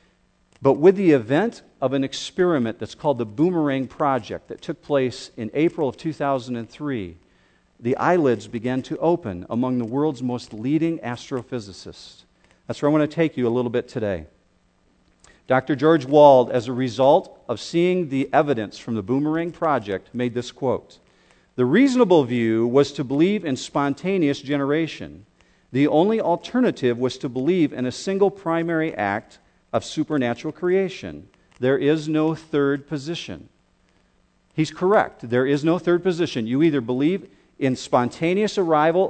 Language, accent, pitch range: English, American, 125-165 Hz